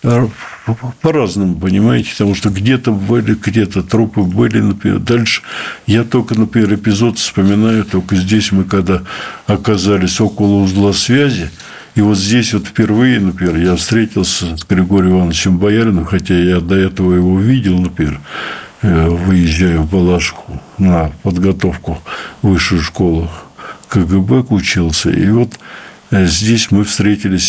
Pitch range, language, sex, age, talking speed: 90-110 Hz, Russian, male, 60-79, 125 wpm